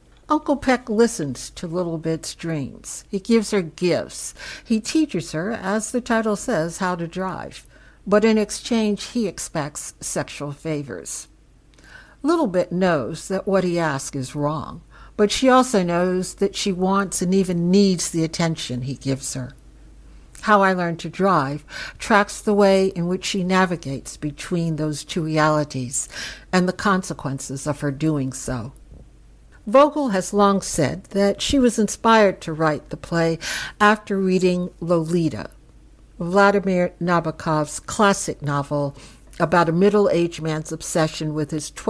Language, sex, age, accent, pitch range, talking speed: English, female, 60-79, American, 150-200 Hz, 145 wpm